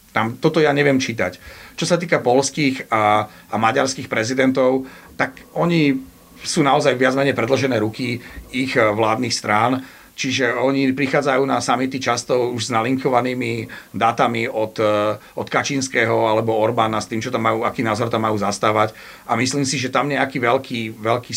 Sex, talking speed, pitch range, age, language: male, 155 wpm, 110-130 Hz, 40-59, Slovak